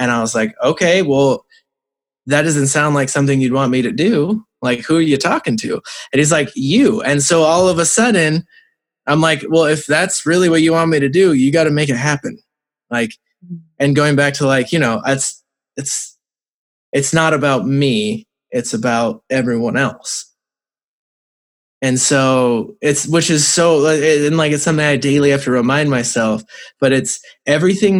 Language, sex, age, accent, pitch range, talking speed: English, male, 20-39, American, 130-165 Hz, 185 wpm